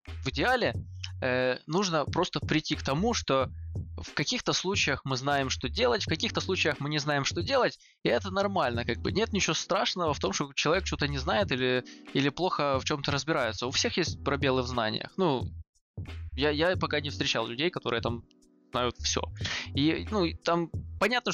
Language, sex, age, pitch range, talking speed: Russian, male, 20-39, 110-155 Hz, 185 wpm